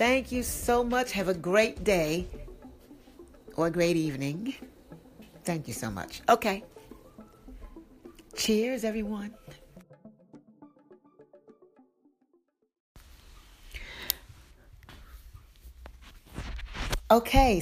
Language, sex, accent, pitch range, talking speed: English, female, American, 150-230 Hz, 70 wpm